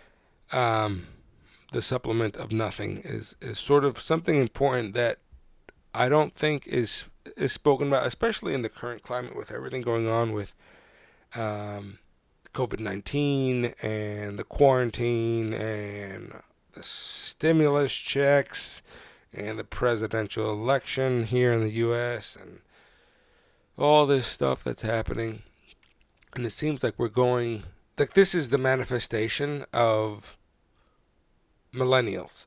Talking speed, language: 120 wpm, English